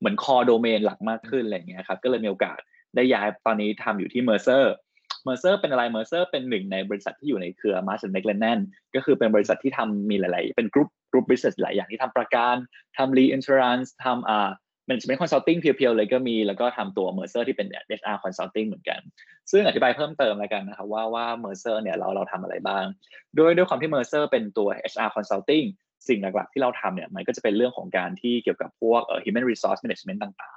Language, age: Thai, 20-39